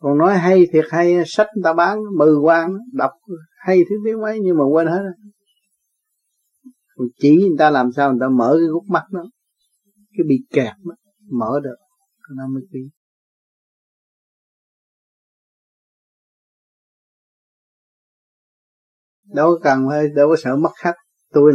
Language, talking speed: Vietnamese, 140 wpm